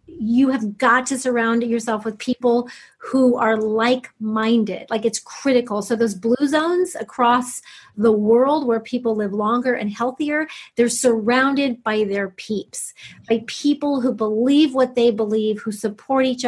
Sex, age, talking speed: female, 30-49, 155 wpm